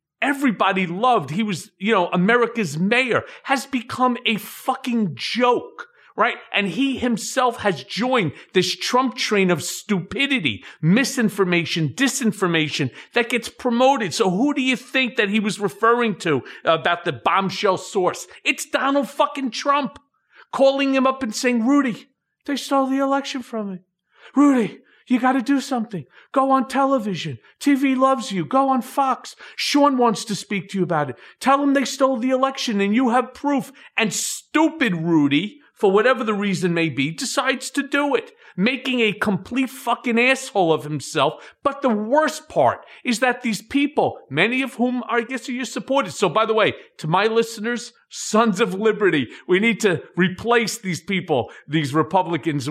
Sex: male